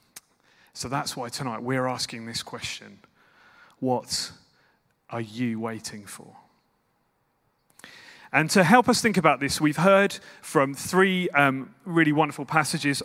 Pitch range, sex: 135-180 Hz, male